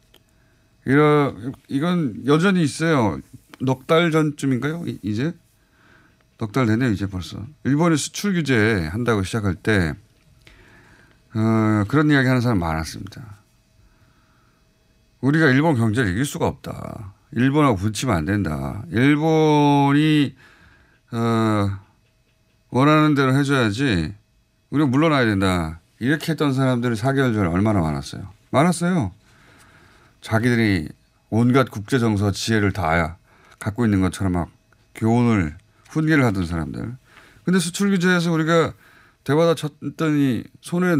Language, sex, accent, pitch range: Korean, male, native, 105-145 Hz